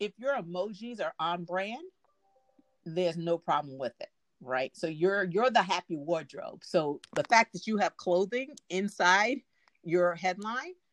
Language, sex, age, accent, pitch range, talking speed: English, female, 50-69, American, 150-200 Hz, 155 wpm